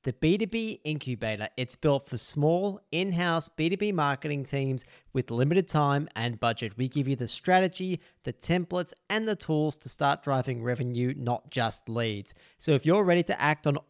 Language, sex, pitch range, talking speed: English, male, 125-160 Hz, 175 wpm